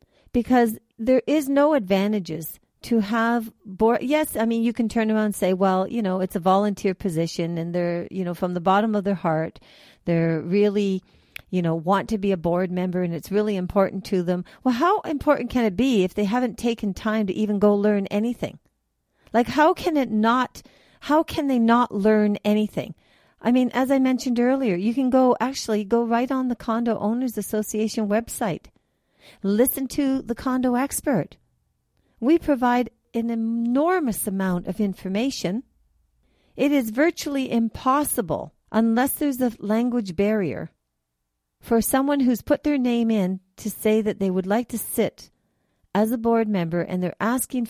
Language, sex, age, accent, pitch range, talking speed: English, female, 50-69, American, 195-245 Hz, 175 wpm